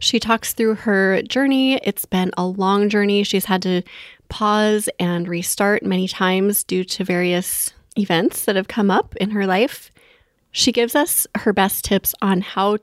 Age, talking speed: 20-39, 175 wpm